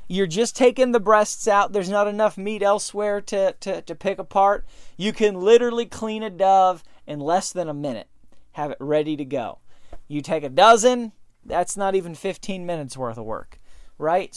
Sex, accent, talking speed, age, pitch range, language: male, American, 190 wpm, 30-49, 155-215 Hz, English